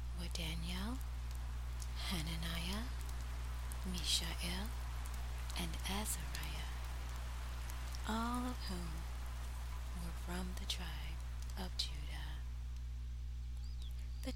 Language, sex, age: English, female, 30-49